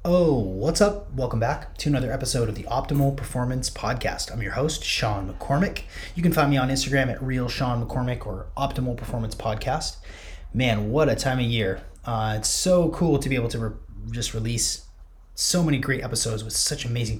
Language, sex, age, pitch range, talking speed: English, male, 30-49, 110-140 Hz, 185 wpm